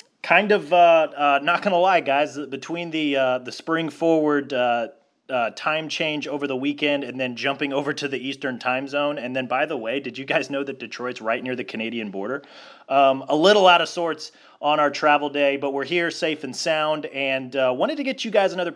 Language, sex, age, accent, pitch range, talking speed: English, male, 30-49, American, 125-155 Hz, 225 wpm